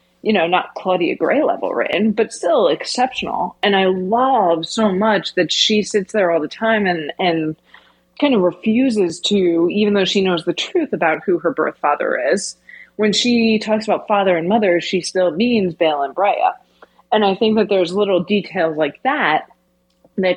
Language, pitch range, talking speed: English, 165-210 Hz, 185 wpm